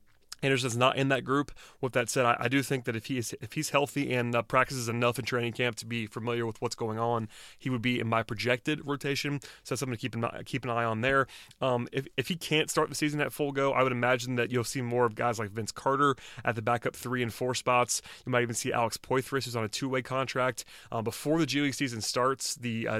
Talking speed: 265 wpm